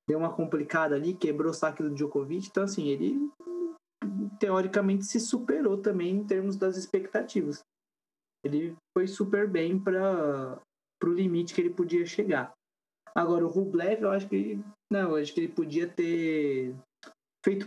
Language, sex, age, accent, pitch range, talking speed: Portuguese, male, 20-39, Brazilian, 150-180 Hz, 145 wpm